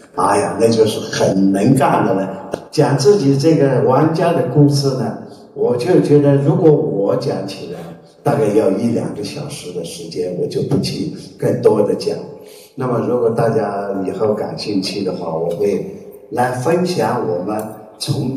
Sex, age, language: male, 50-69, Chinese